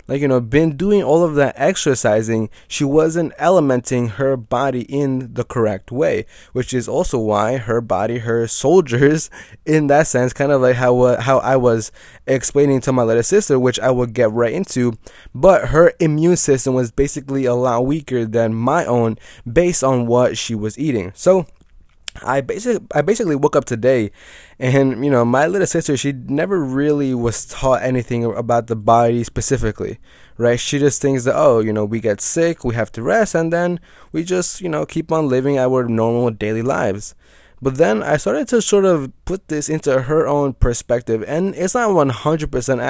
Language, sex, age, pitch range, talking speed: English, male, 20-39, 120-150 Hz, 185 wpm